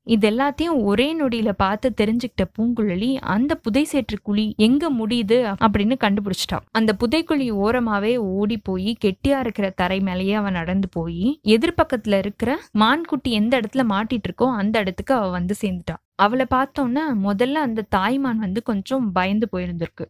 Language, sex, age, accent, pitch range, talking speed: Tamil, female, 20-39, native, 200-260 Hz, 135 wpm